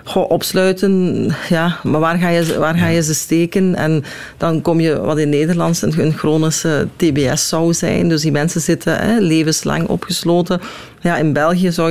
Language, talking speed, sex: Dutch, 150 wpm, female